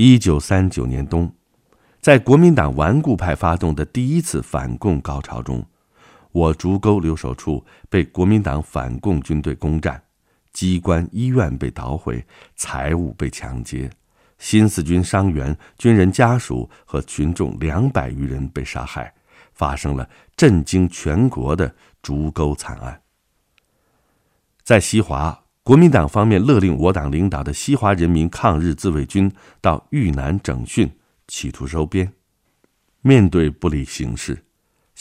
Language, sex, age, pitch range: Chinese, male, 50-69, 70-100 Hz